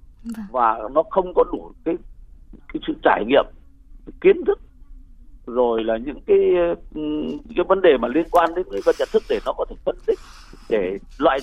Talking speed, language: 180 wpm, Vietnamese